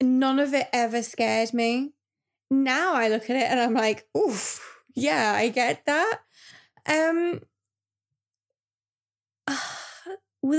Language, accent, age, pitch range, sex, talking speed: English, British, 20-39, 235-285 Hz, female, 125 wpm